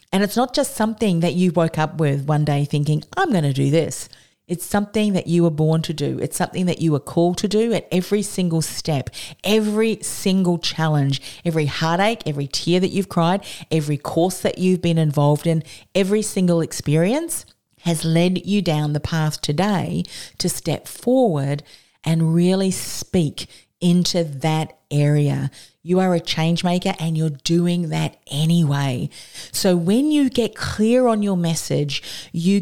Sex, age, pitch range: female, 40-59, 150-185 Hz